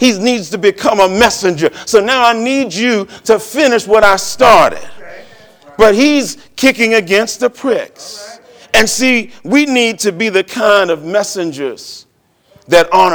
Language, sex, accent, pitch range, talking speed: English, male, American, 180-235 Hz, 155 wpm